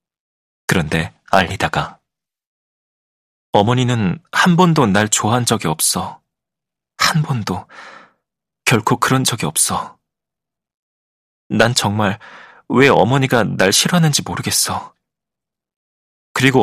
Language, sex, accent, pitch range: Korean, male, native, 100-130 Hz